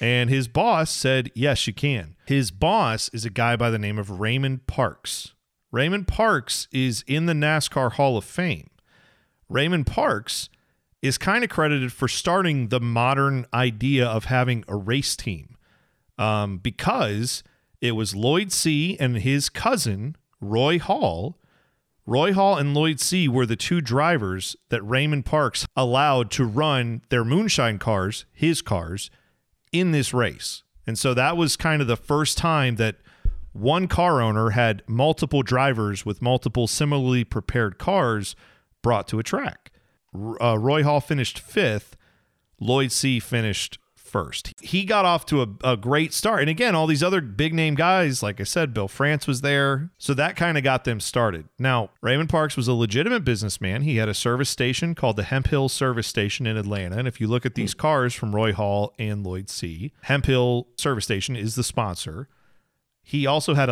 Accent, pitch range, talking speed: American, 110-145 Hz, 175 wpm